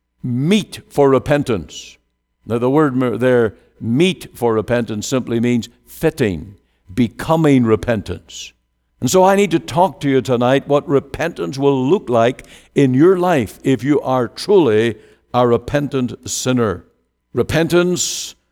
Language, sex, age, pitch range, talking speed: English, male, 60-79, 110-150 Hz, 130 wpm